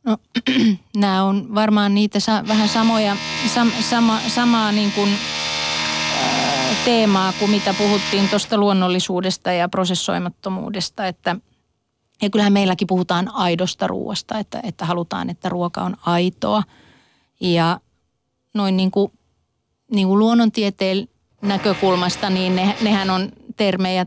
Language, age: Finnish, 30-49